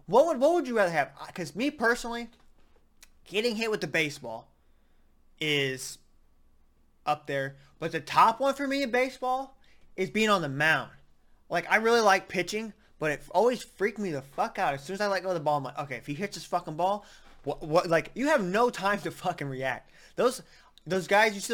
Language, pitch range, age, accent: English, 145-200 Hz, 20-39, American